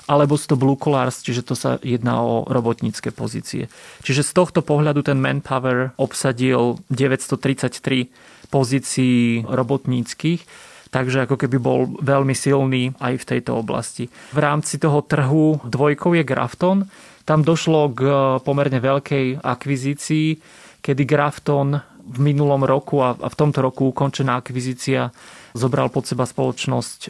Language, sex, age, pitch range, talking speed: Slovak, male, 30-49, 130-150 Hz, 130 wpm